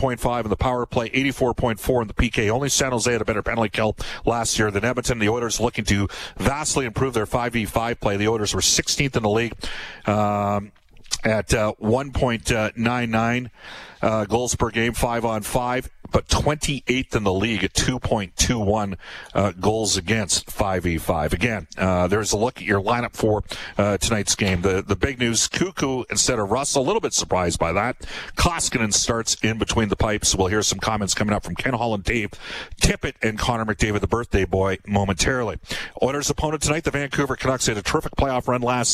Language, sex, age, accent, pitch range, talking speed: English, male, 40-59, American, 105-125 Hz, 185 wpm